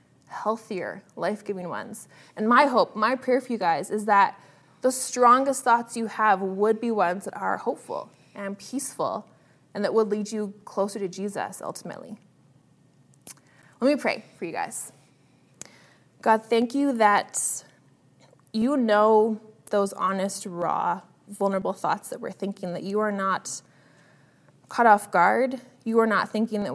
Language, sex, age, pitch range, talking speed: English, female, 20-39, 195-225 Hz, 150 wpm